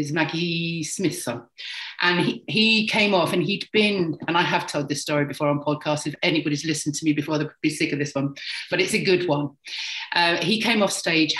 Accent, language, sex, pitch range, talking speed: British, English, female, 150-230 Hz, 220 wpm